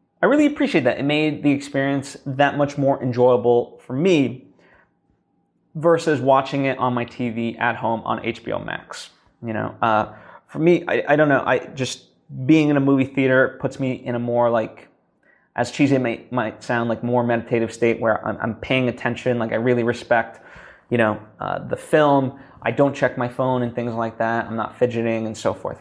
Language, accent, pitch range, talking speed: English, American, 120-145 Hz, 195 wpm